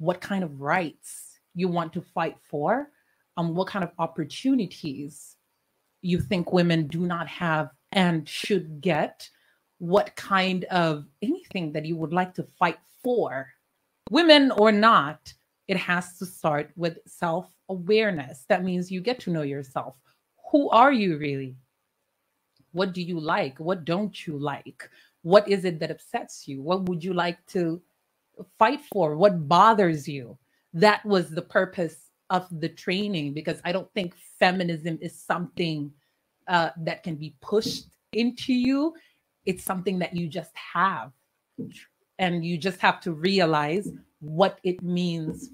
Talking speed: 150 wpm